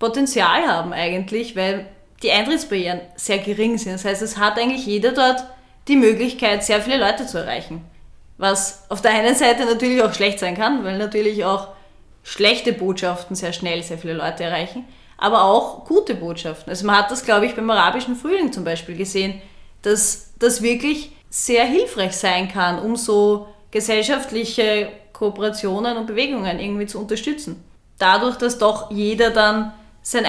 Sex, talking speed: female, 160 wpm